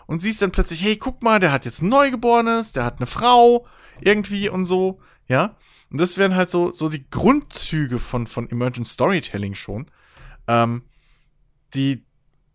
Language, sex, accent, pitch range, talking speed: German, male, German, 120-150 Hz, 165 wpm